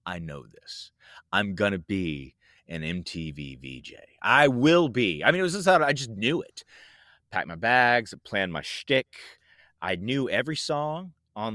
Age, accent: 30-49, American